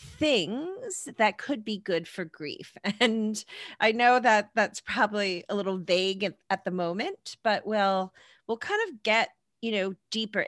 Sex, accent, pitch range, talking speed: female, American, 175-220 Hz, 165 wpm